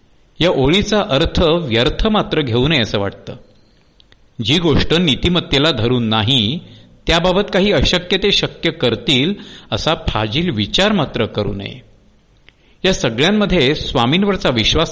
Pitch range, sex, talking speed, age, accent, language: 110-155 Hz, male, 120 wpm, 50-69, native, Marathi